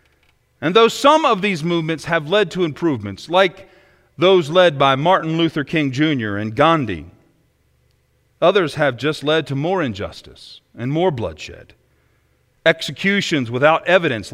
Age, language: 40-59, English